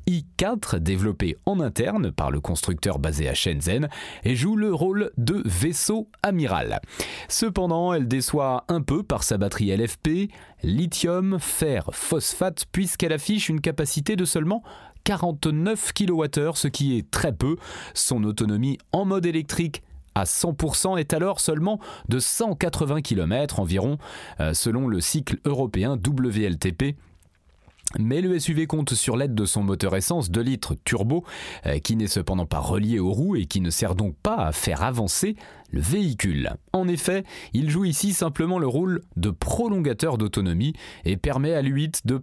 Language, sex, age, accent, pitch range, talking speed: French, male, 30-49, French, 105-170 Hz, 155 wpm